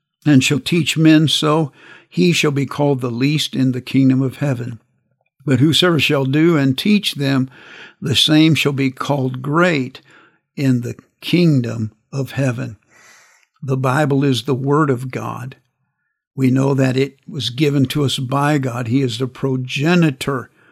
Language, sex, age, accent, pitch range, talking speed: English, male, 60-79, American, 130-145 Hz, 160 wpm